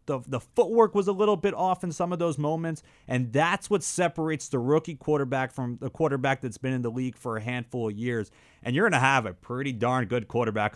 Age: 30-49